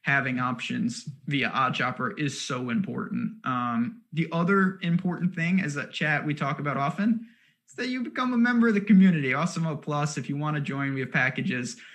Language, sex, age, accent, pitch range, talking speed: English, male, 20-39, American, 130-170 Hz, 195 wpm